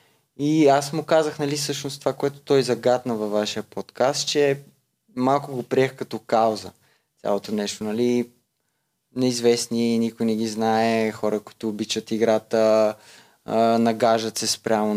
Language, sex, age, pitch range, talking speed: Bulgarian, male, 20-39, 110-140 Hz, 135 wpm